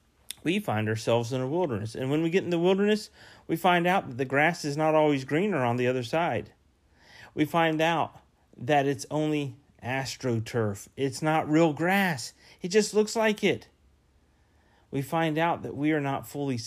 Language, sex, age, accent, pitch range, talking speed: English, male, 40-59, American, 105-140 Hz, 185 wpm